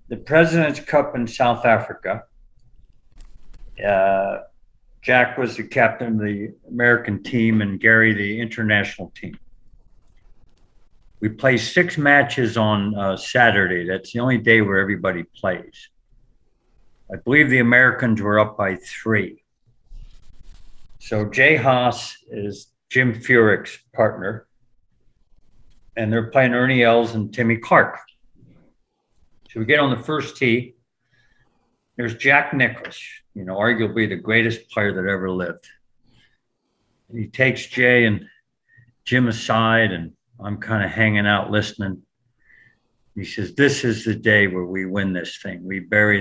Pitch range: 100-120 Hz